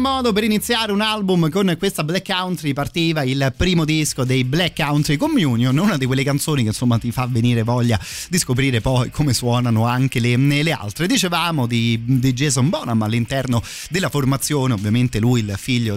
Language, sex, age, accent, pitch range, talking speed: Italian, male, 30-49, native, 120-155 Hz, 180 wpm